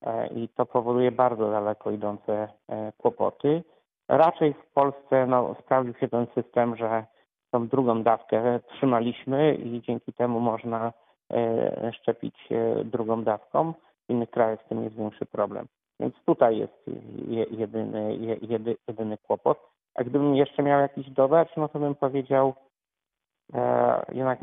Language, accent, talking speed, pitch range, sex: Polish, native, 125 wpm, 110-130 Hz, male